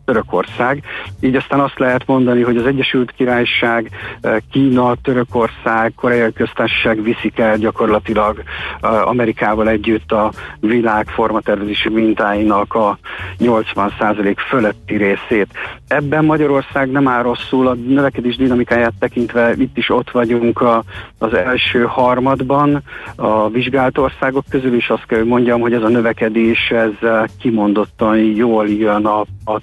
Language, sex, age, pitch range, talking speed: Hungarian, male, 50-69, 110-125 Hz, 125 wpm